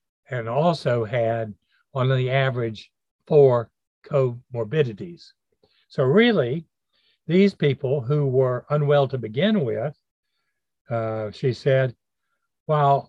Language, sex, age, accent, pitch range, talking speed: English, male, 60-79, American, 120-150 Hz, 100 wpm